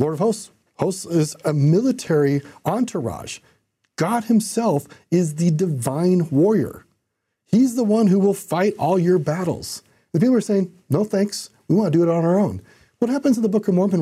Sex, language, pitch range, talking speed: male, English, 140-195 Hz, 190 wpm